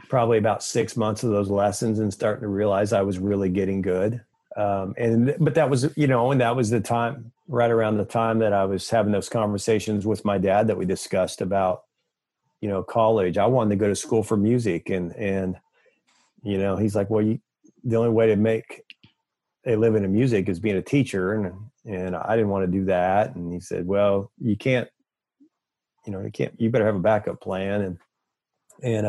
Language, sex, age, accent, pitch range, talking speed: English, male, 40-59, American, 100-120 Hz, 215 wpm